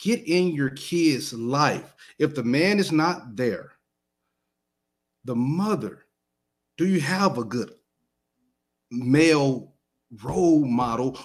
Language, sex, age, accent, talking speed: English, male, 40-59, American, 110 wpm